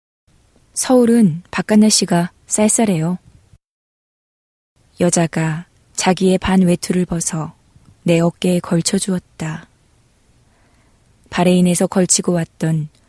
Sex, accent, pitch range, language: female, native, 160-190 Hz, Korean